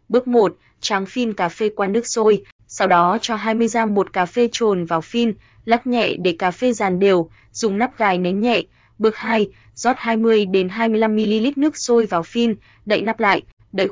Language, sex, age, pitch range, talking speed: Vietnamese, female, 20-39, 190-235 Hz, 190 wpm